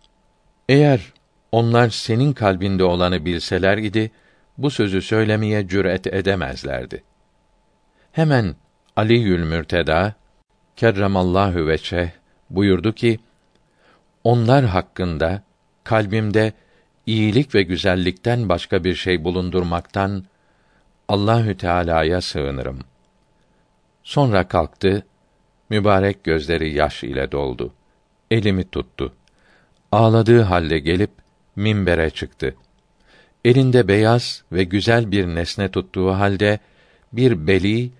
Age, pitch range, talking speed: 50-69, 85-110 Hz, 90 wpm